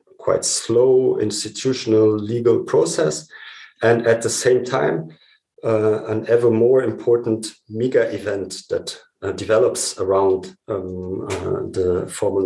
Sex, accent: male, German